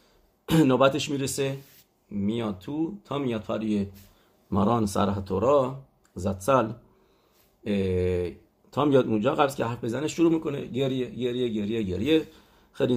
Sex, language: male, English